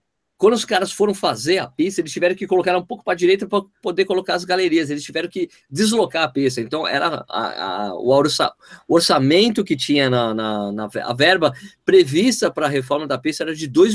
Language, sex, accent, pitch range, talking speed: Portuguese, male, Brazilian, 130-215 Hz, 220 wpm